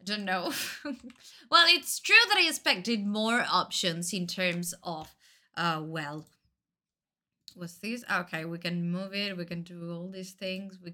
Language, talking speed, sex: Italian, 160 wpm, female